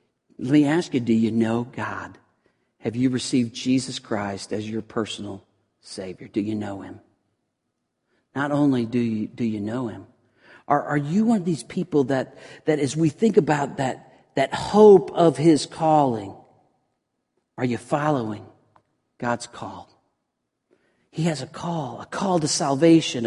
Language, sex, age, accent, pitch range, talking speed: English, male, 50-69, American, 120-180 Hz, 155 wpm